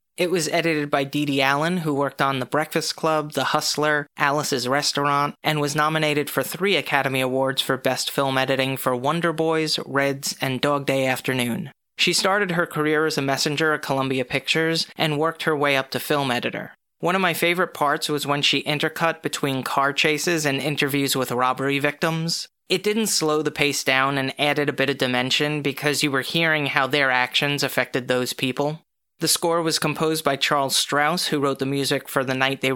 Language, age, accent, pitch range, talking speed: English, 30-49, American, 135-160 Hz, 200 wpm